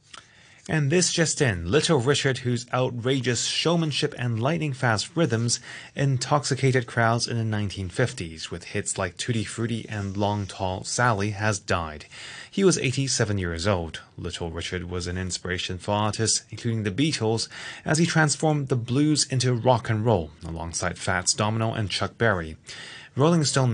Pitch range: 95-130 Hz